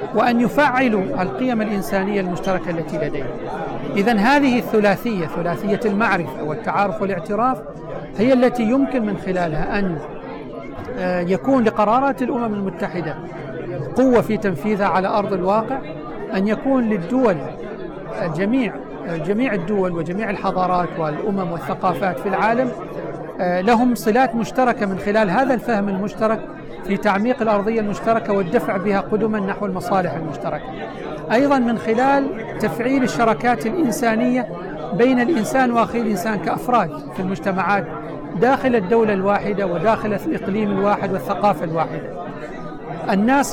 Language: Arabic